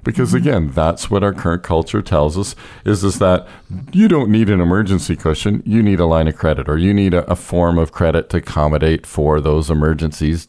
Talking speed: 210 wpm